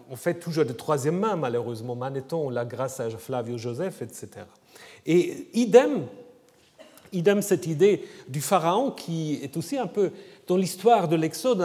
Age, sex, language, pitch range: 40-59, male, French, 155-245 Hz